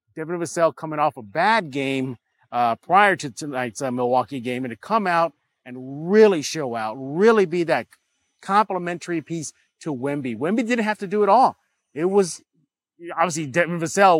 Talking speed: 175 wpm